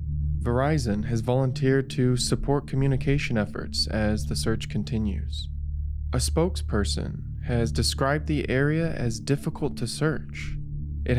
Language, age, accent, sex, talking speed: English, 20-39, American, male, 120 wpm